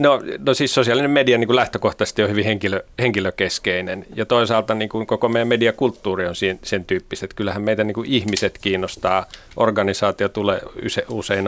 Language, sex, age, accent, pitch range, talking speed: Finnish, male, 30-49, native, 95-110 Hz, 130 wpm